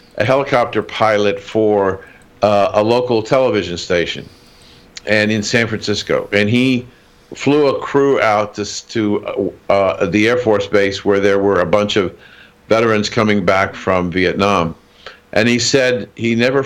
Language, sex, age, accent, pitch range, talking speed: English, male, 50-69, American, 100-120 Hz, 150 wpm